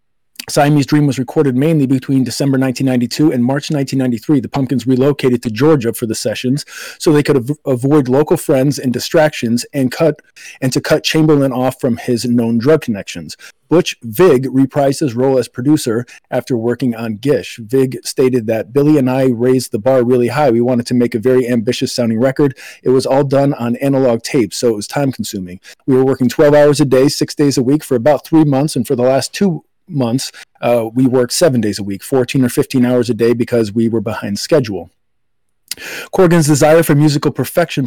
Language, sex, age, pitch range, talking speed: English, male, 40-59, 125-145 Hz, 200 wpm